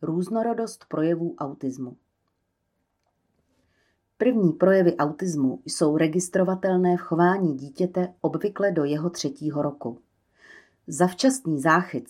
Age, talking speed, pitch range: 40-59, 90 wpm, 145-185 Hz